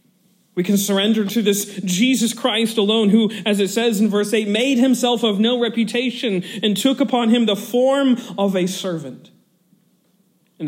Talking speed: 170 wpm